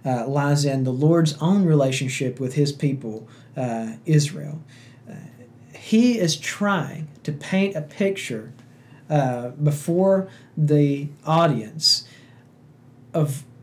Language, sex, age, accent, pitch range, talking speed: English, male, 40-59, American, 130-155 Hz, 110 wpm